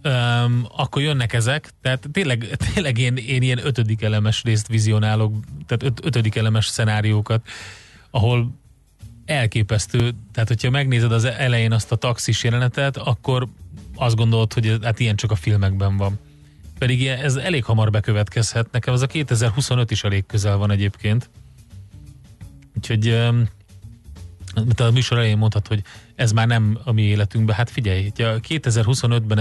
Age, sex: 30-49, male